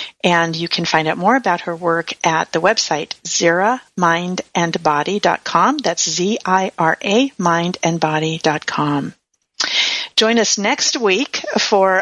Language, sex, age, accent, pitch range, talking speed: English, female, 50-69, American, 170-220 Hz, 105 wpm